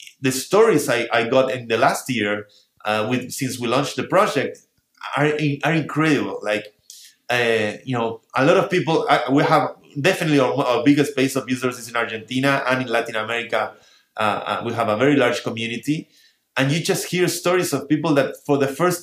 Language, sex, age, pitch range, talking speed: English, male, 30-49, 125-145 Hz, 200 wpm